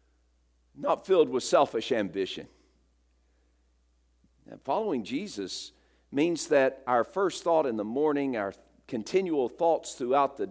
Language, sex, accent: English, male, American